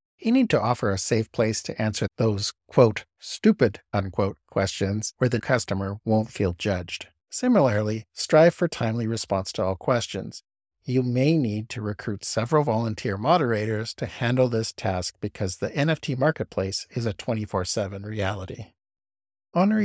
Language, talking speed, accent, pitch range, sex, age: English, 150 wpm, American, 100-125 Hz, male, 50-69